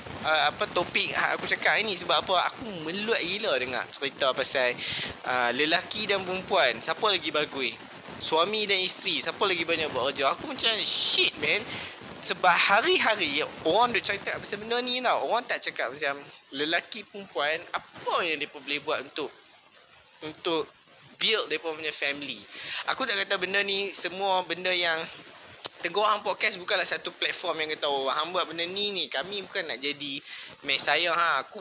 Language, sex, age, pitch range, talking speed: Malay, male, 20-39, 145-200 Hz, 165 wpm